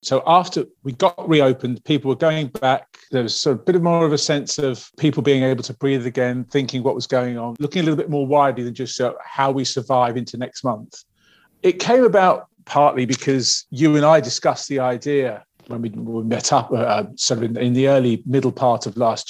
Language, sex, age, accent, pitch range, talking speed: English, male, 40-59, British, 125-150 Hz, 230 wpm